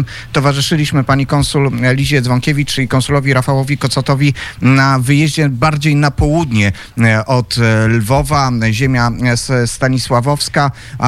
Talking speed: 95 wpm